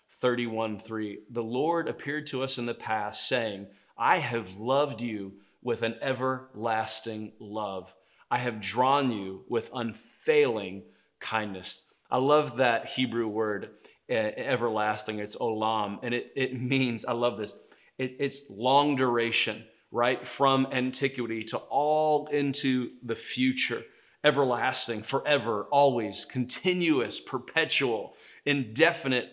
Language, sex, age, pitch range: English, male, 30-49, 115-135 Hz